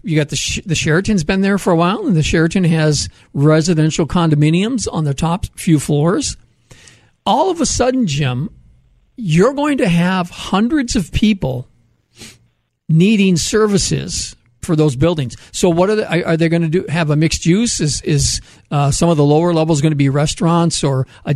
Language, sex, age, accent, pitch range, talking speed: English, male, 50-69, American, 145-190 Hz, 185 wpm